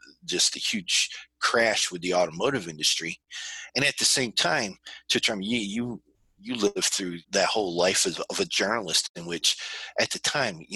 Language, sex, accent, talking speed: English, male, American, 175 wpm